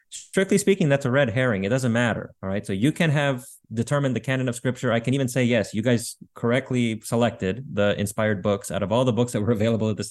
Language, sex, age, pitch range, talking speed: English, male, 30-49, 110-140 Hz, 250 wpm